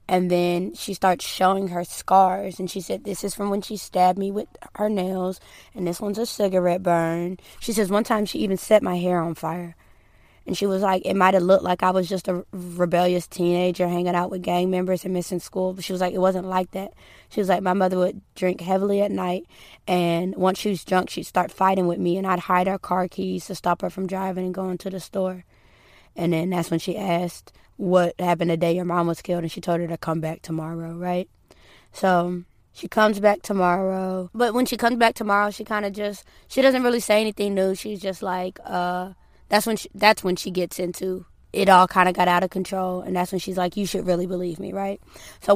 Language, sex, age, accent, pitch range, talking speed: English, female, 20-39, American, 180-200 Hz, 235 wpm